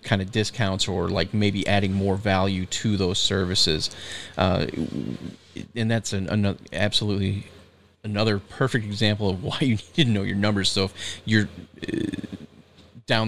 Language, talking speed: English, 150 wpm